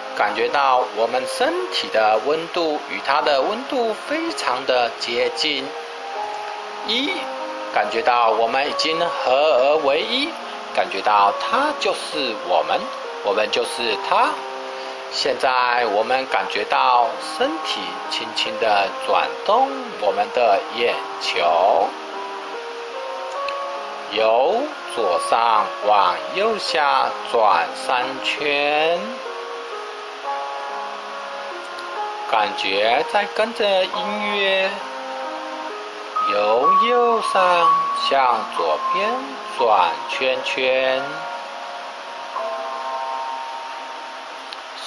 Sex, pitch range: male, 130-215 Hz